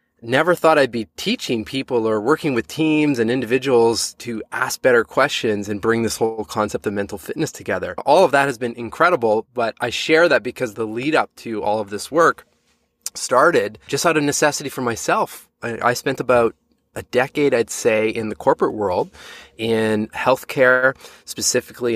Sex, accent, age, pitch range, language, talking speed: male, American, 20-39, 110-135 Hz, English, 180 wpm